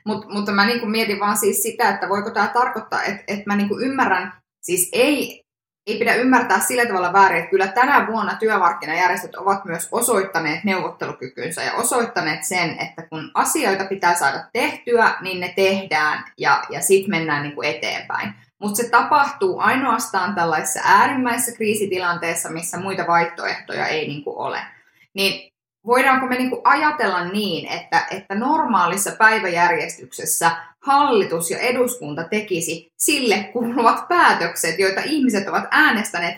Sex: female